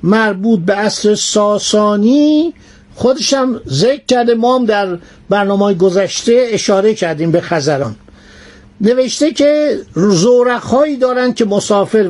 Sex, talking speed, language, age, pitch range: male, 105 wpm, Persian, 60-79, 190-240 Hz